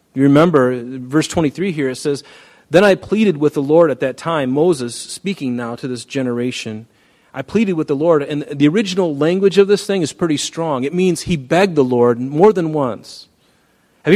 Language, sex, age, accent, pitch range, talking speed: English, male, 40-59, American, 120-175 Hz, 200 wpm